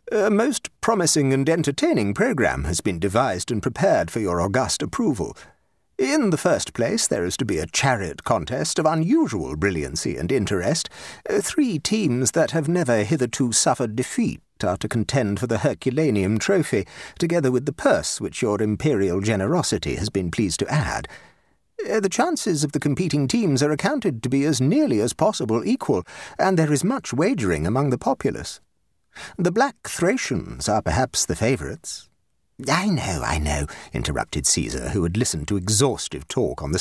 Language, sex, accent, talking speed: English, male, British, 170 wpm